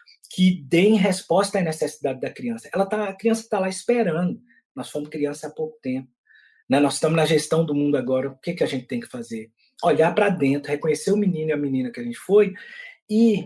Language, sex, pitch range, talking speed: English, male, 145-205 Hz, 225 wpm